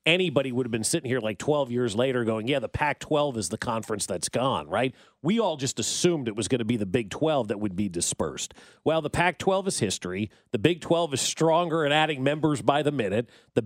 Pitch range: 125-165 Hz